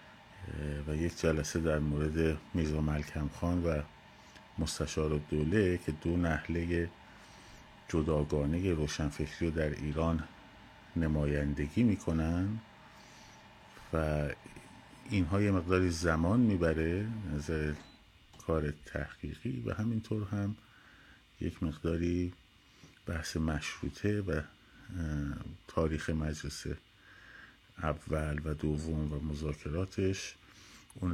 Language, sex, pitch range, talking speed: Persian, male, 75-90 Hz, 90 wpm